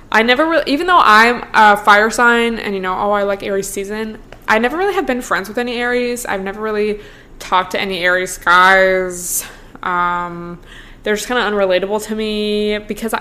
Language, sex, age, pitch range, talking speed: English, female, 20-39, 185-235 Hz, 195 wpm